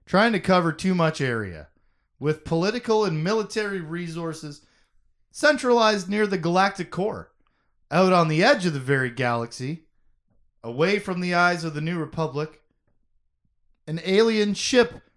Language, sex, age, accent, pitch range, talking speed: English, male, 30-49, American, 140-200 Hz, 140 wpm